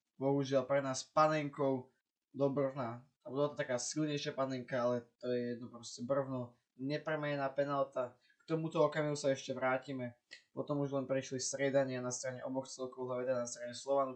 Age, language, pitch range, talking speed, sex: 20-39, Slovak, 130-150 Hz, 155 wpm, male